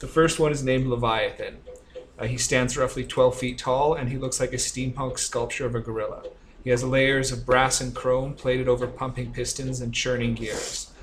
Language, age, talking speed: English, 30-49, 200 wpm